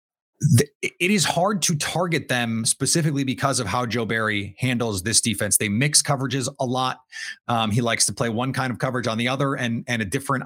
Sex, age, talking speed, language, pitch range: male, 30-49, 205 wpm, English, 115-145 Hz